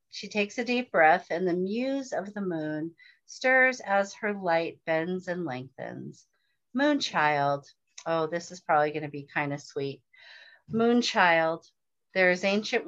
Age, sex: 40-59, female